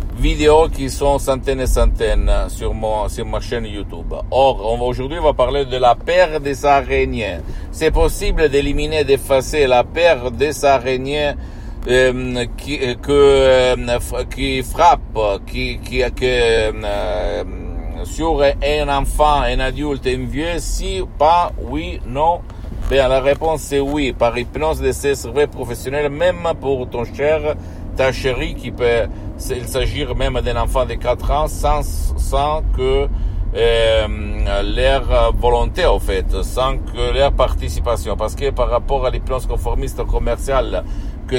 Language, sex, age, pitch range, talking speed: Italian, male, 60-79, 105-135 Hz, 145 wpm